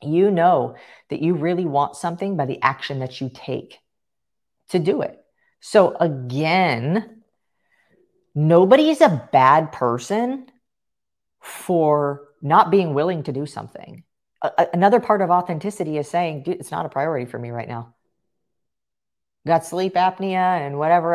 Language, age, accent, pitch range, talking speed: English, 40-59, American, 155-210 Hz, 140 wpm